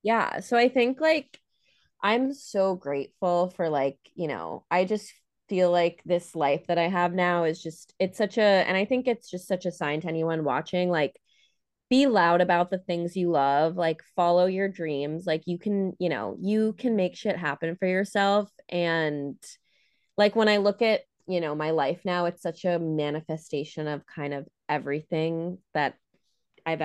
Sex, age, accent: female, 20-39, American